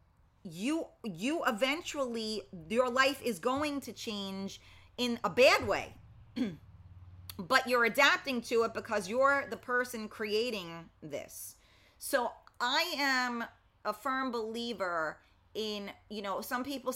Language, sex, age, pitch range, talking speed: English, female, 30-49, 195-255 Hz, 125 wpm